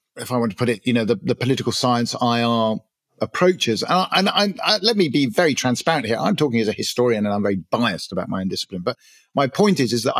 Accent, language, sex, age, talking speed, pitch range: British, English, male, 40-59, 240 wpm, 115-150 Hz